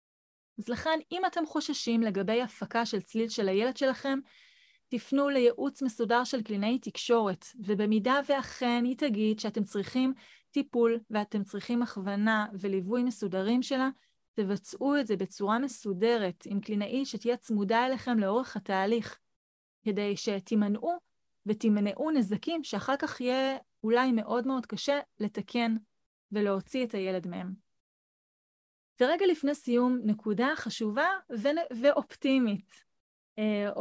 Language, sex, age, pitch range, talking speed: Hebrew, female, 30-49, 210-260 Hz, 120 wpm